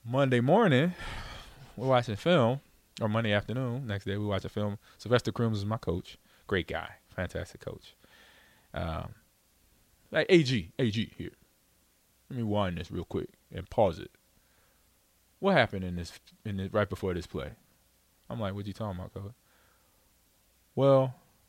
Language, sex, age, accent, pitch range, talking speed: English, male, 20-39, American, 90-125 Hz, 155 wpm